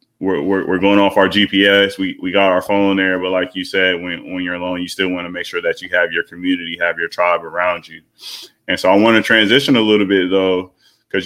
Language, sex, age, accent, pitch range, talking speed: English, male, 20-39, American, 90-100 Hz, 250 wpm